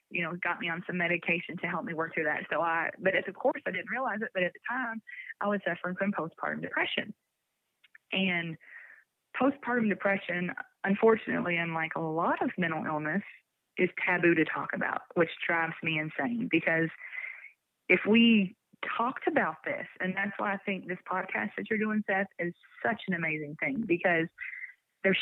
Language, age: English, 20-39